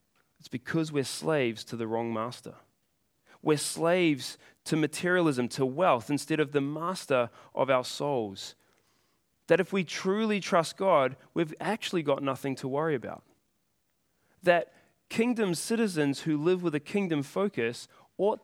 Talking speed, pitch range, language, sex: 145 wpm, 140-190 Hz, English, male